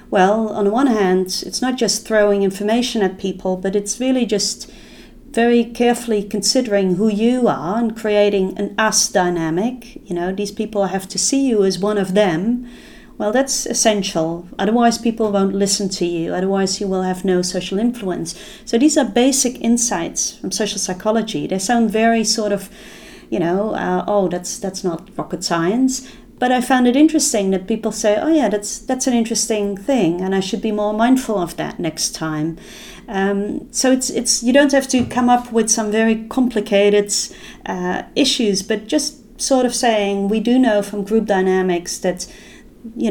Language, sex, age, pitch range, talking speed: French, female, 40-59, 195-235 Hz, 180 wpm